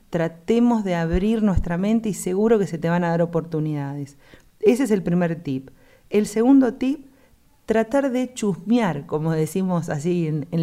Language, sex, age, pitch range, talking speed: Spanish, female, 40-59, 165-220 Hz, 170 wpm